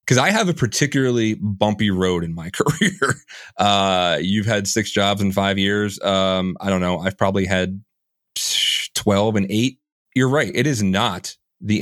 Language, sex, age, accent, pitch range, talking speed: English, male, 30-49, American, 100-125 Hz, 175 wpm